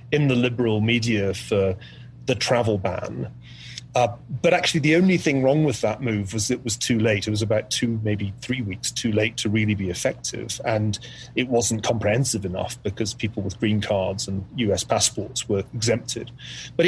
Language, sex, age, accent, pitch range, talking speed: English, male, 30-49, British, 105-130 Hz, 185 wpm